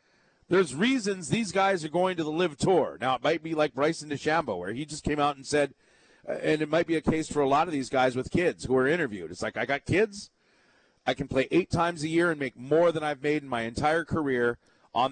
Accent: American